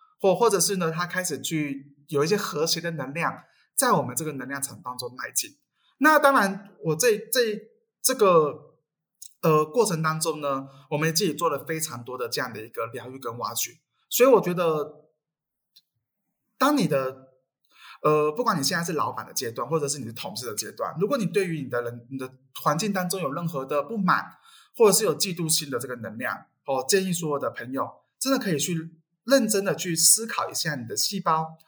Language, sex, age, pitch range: Chinese, male, 20-39, 140-200 Hz